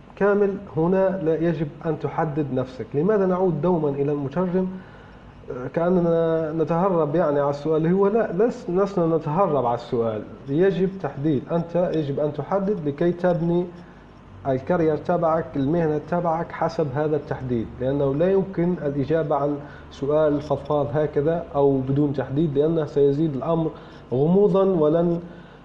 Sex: male